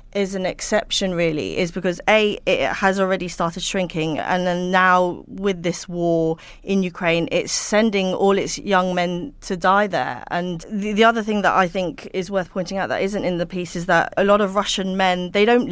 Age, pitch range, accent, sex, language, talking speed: 30-49, 170-195 Hz, British, female, English, 210 wpm